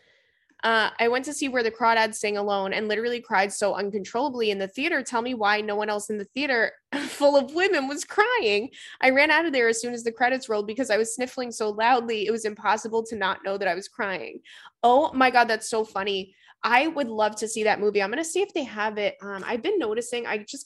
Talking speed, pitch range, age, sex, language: 250 wpm, 205-265 Hz, 20-39, female, English